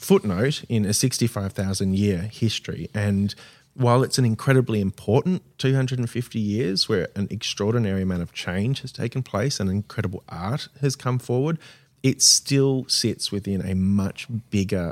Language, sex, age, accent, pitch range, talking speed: English, male, 20-39, Australian, 95-125 Hz, 145 wpm